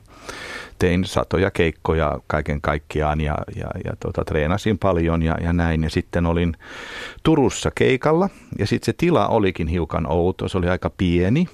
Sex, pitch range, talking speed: male, 85-110 Hz, 155 wpm